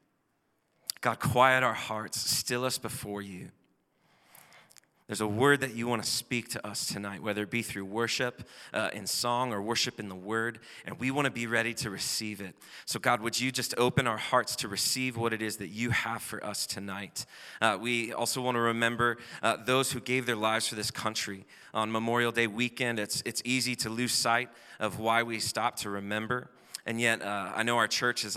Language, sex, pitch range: English, male, 110-120 Hz